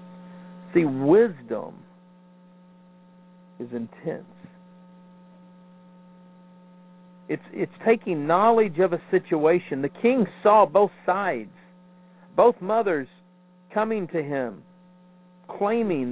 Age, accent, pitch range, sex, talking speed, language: 50-69, American, 135-180 Hz, male, 80 wpm, English